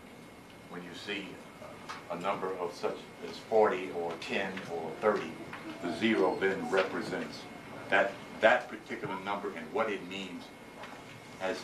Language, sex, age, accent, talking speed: English, male, 60-79, American, 135 wpm